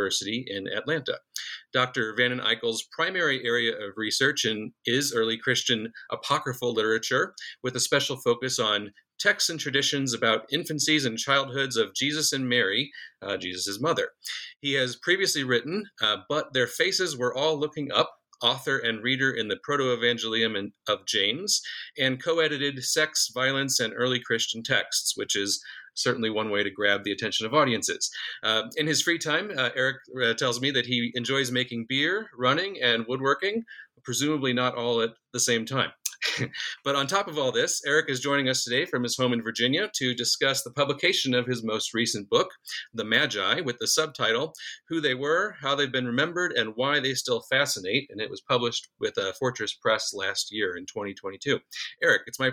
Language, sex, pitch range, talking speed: English, male, 115-145 Hz, 180 wpm